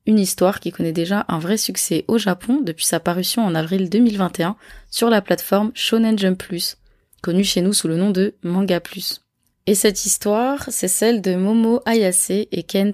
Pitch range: 170-205 Hz